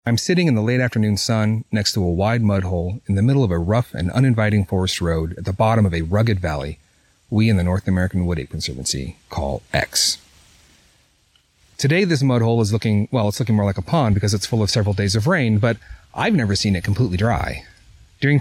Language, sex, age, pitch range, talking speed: English, male, 30-49, 95-125 Hz, 225 wpm